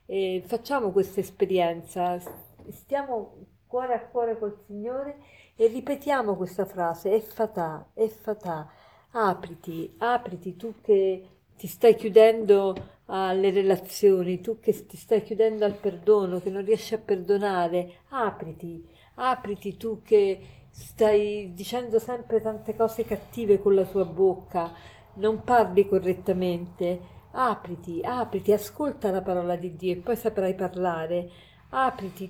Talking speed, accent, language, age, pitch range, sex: 125 wpm, native, Italian, 40-59, 180-220 Hz, female